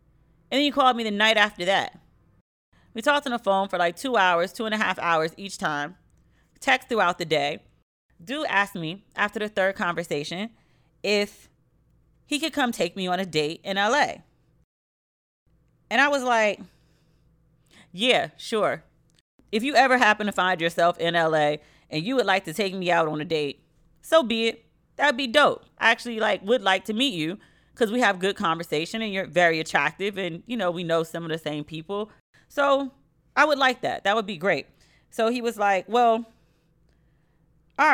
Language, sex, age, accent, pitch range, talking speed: English, female, 30-49, American, 160-230 Hz, 190 wpm